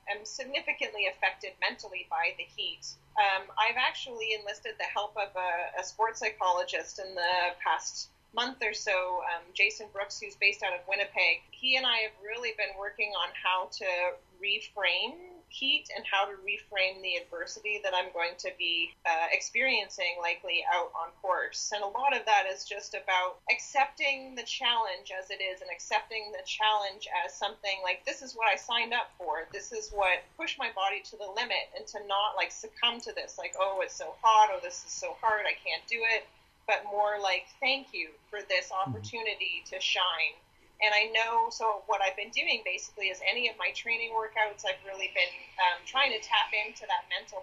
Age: 30-49